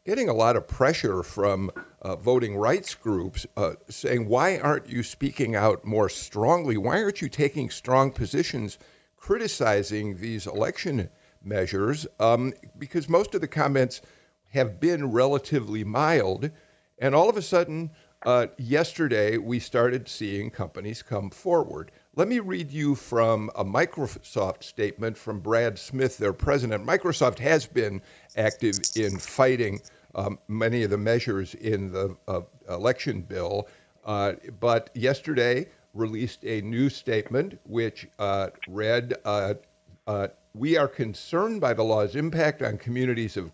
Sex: male